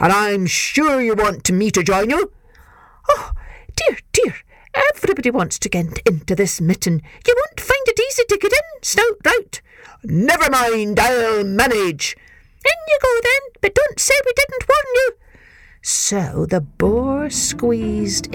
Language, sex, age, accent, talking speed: English, female, 50-69, British, 155 wpm